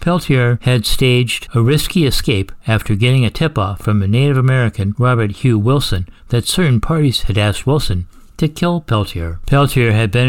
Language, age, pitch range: English, 60-79, 100-130 Hz